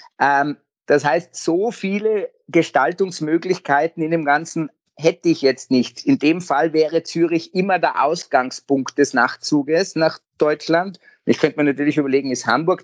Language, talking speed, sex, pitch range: German, 145 wpm, male, 130-165 Hz